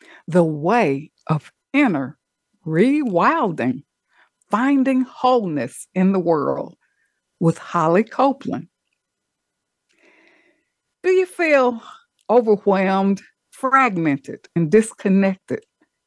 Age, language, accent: 60-79, English, American